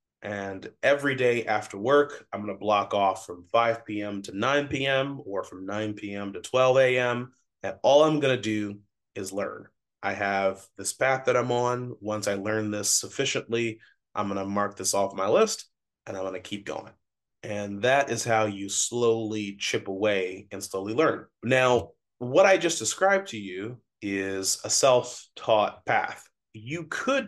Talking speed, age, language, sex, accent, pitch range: 180 wpm, 30-49, English, male, American, 100-125 Hz